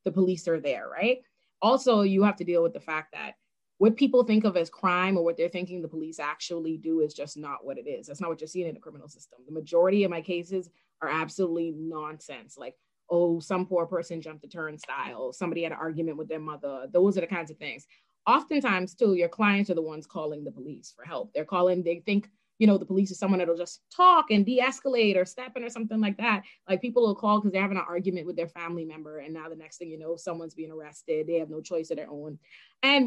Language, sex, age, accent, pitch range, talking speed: English, female, 20-39, American, 155-195 Hz, 250 wpm